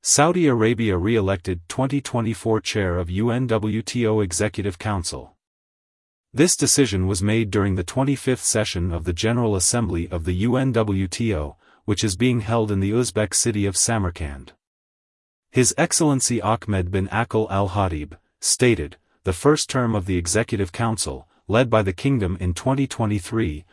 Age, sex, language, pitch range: 40-59, male, English, 90-120 Hz